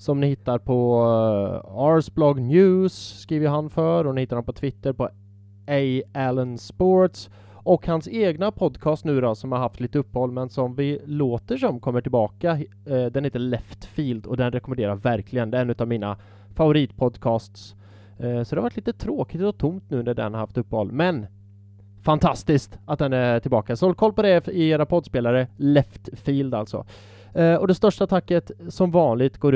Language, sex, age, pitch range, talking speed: English, male, 20-39, 115-155 Hz, 185 wpm